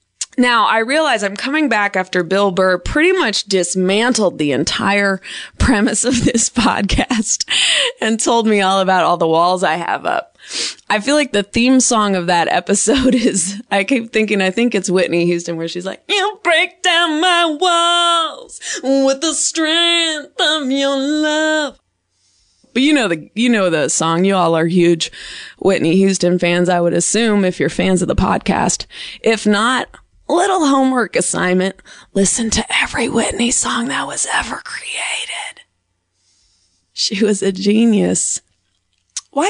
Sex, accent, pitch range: female, American, 180-270 Hz